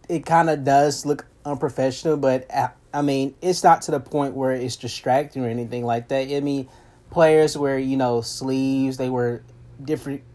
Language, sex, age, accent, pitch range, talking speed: English, male, 30-49, American, 125-145 Hz, 180 wpm